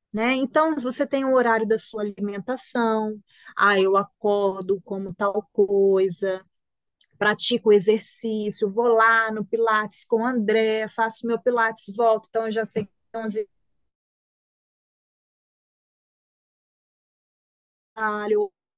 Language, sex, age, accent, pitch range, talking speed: Portuguese, female, 30-49, Brazilian, 210-330 Hz, 120 wpm